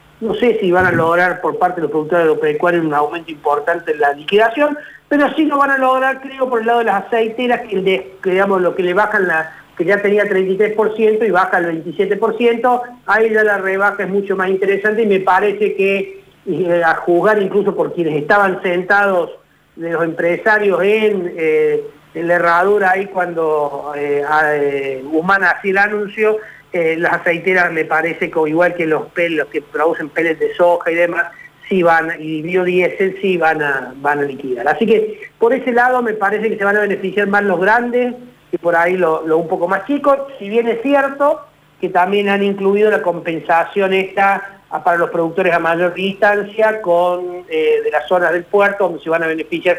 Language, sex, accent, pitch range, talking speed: Spanish, male, Argentinian, 165-205 Hz, 200 wpm